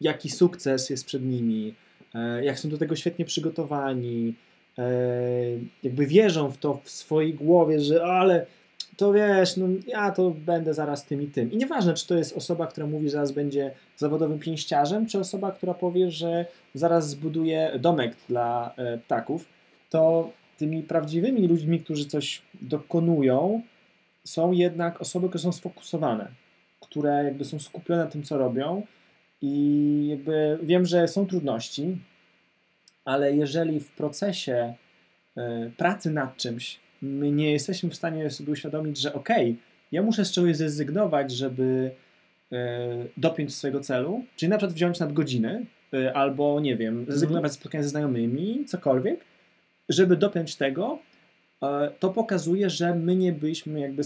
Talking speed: 145 wpm